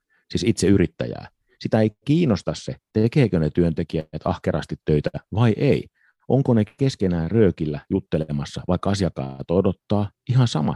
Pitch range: 85-115 Hz